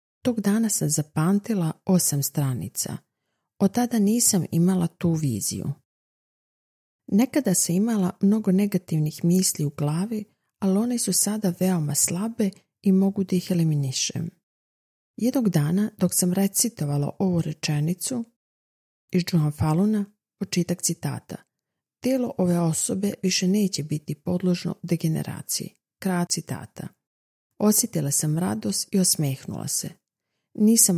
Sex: female